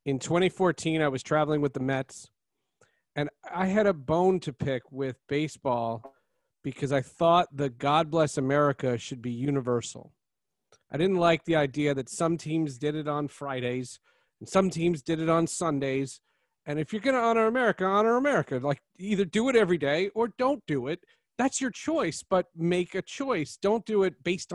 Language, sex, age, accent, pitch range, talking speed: English, male, 40-59, American, 145-195 Hz, 185 wpm